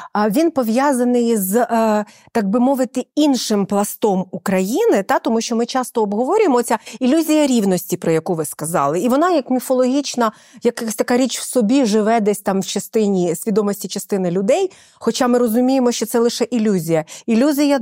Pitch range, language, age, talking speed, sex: 200-255 Hz, Ukrainian, 40-59, 160 wpm, female